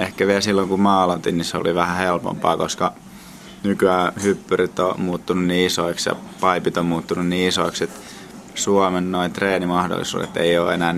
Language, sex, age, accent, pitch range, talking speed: Finnish, male, 20-39, native, 85-95 Hz, 165 wpm